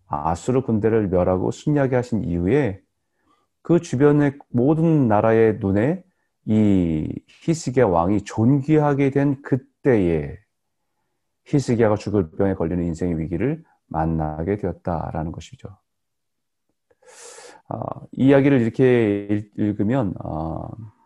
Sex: male